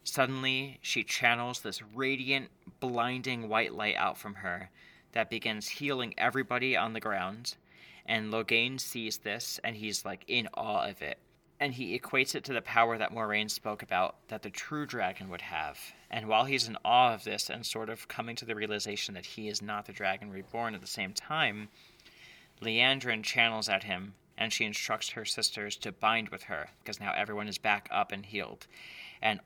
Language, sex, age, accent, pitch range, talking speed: English, male, 30-49, American, 105-120 Hz, 190 wpm